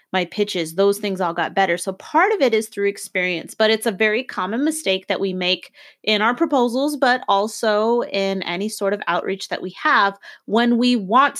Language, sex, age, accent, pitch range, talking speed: English, female, 30-49, American, 190-245 Hz, 205 wpm